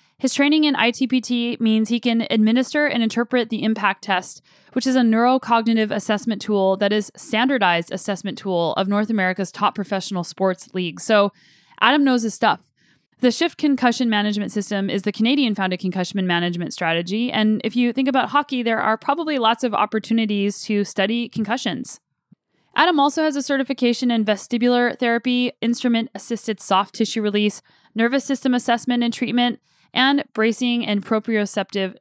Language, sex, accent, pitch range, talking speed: English, female, American, 205-245 Hz, 160 wpm